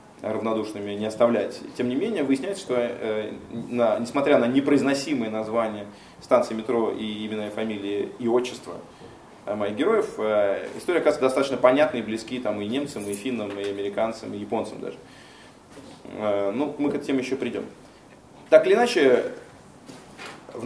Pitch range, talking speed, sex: 110-145 Hz, 155 wpm, male